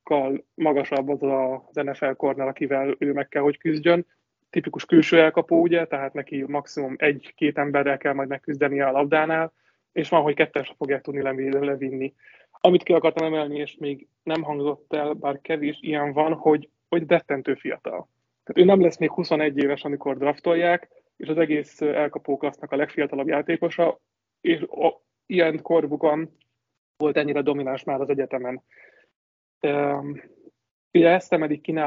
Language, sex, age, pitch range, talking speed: Hungarian, male, 20-39, 140-160 Hz, 150 wpm